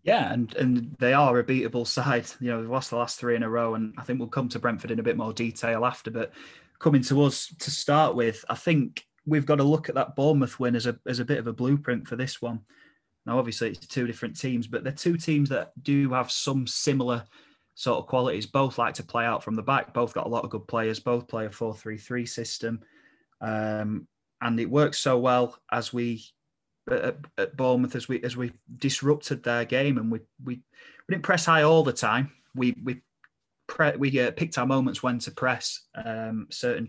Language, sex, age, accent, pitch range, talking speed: English, male, 20-39, British, 120-135 Hz, 225 wpm